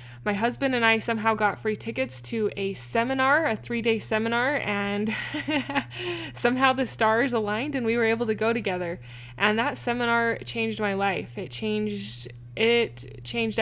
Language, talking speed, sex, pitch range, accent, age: English, 160 wpm, female, 180-240 Hz, American, 20-39